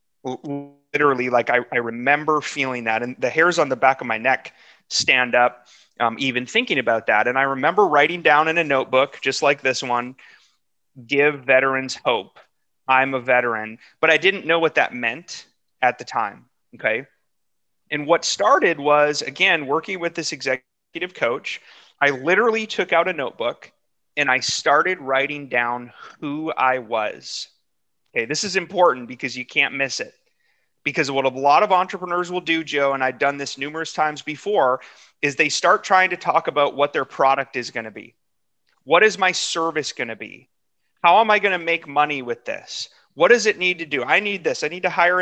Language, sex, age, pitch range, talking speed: English, male, 30-49, 130-180 Hz, 190 wpm